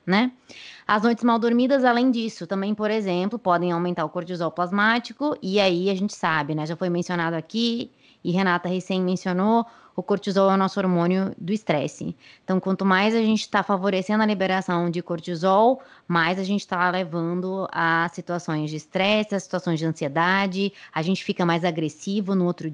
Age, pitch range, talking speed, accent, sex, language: 20-39, 170-200 Hz, 180 wpm, Brazilian, female, Portuguese